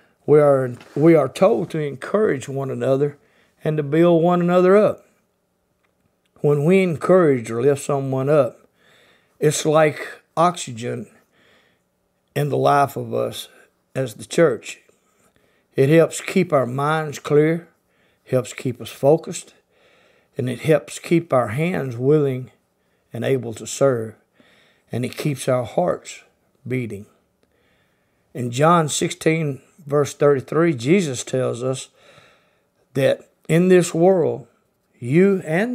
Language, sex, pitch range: English, male, 130-165 Hz